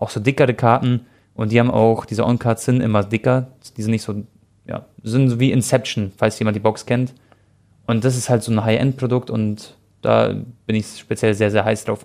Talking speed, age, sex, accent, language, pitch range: 215 wpm, 20-39, male, German, German, 110-135 Hz